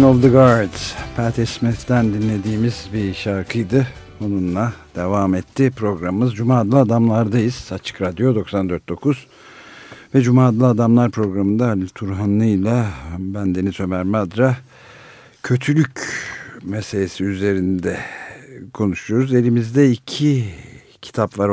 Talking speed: 105 wpm